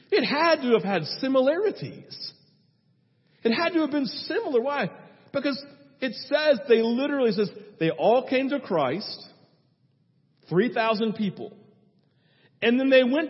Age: 40-59